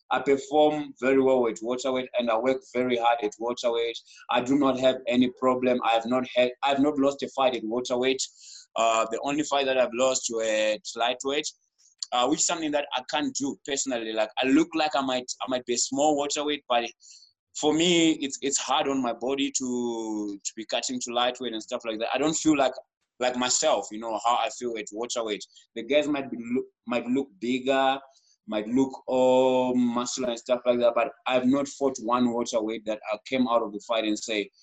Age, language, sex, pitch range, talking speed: 20-39, English, male, 115-135 Hz, 225 wpm